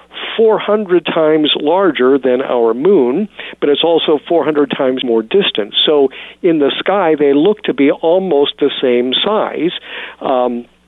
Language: English